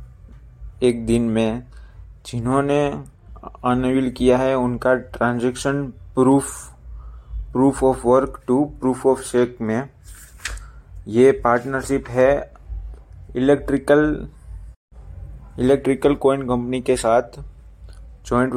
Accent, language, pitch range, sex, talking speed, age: native, Hindi, 95-125 Hz, male, 90 wpm, 20-39